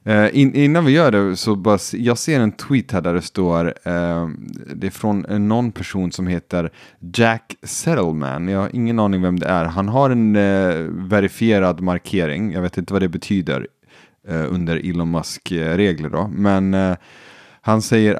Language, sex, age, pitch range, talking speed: Swedish, male, 30-49, 90-115 Hz, 180 wpm